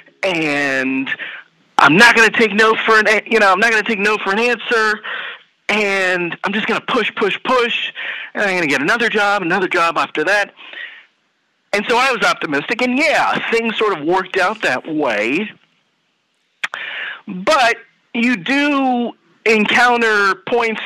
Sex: male